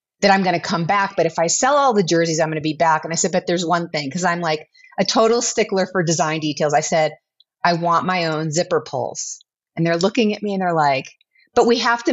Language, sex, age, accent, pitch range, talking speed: English, female, 30-49, American, 170-225 Hz, 255 wpm